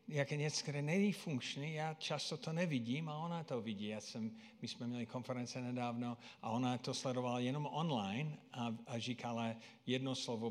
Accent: native